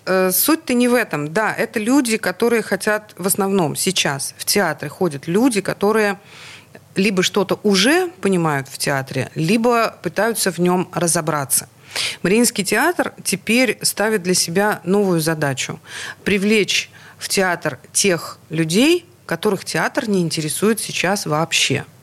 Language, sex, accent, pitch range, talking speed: Russian, female, native, 155-210 Hz, 130 wpm